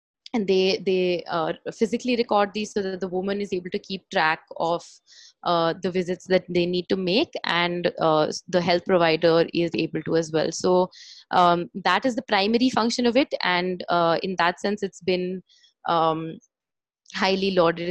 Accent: Indian